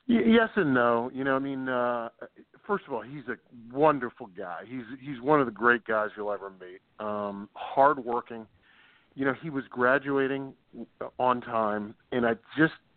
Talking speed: 175 wpm